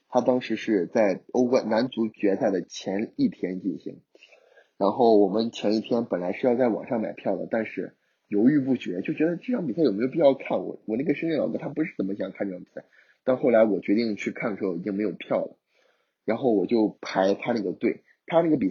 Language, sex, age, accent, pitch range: Chinese, male, 20-39, native, 110-135 Hz